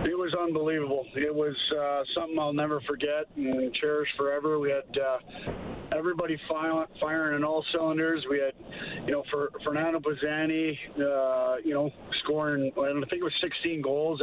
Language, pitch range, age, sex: English, 135-155 Hz, 50-69, male